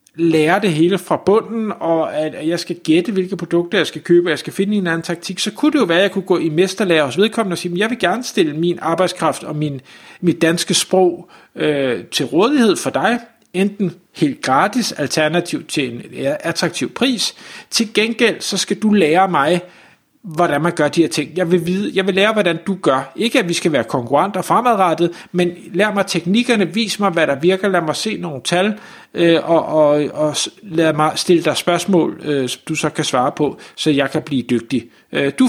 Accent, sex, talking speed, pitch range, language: native, male, 215 wpm, 155-195 Hz, Danish